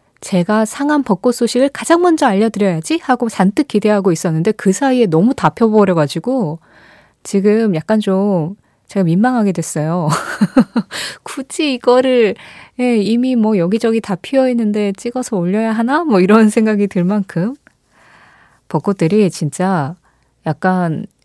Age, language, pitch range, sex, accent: 20-39, Korean, 175-235 Hz, female, native